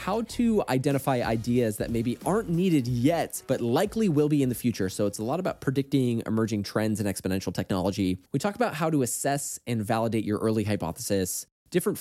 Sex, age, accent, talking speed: male, 20-39, American, 195 wpm